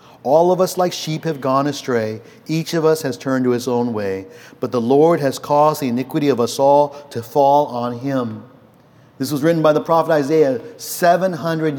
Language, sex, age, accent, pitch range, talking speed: English, male, 50-69, American, 125-165 Hz, 200 wpm